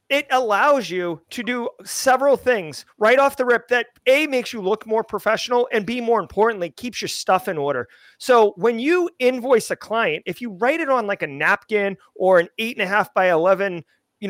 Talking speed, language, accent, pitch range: 210 wpm, English, American, 185-245 Hz